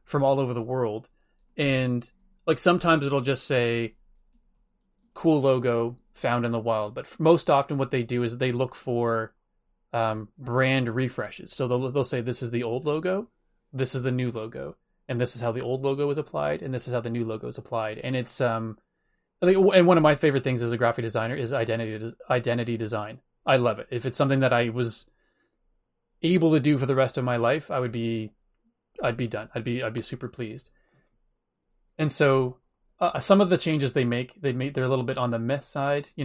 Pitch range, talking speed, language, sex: 115-140 Hz, 215 wpm, English, male